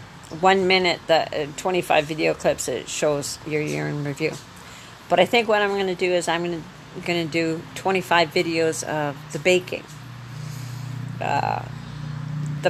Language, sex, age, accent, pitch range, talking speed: English, female, 50-69, American, 155-190 Hz, 140 wpm